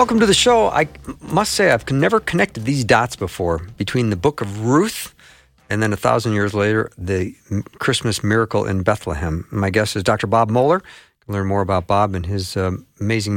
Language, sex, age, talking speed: English, male, 50-69, 200 wpm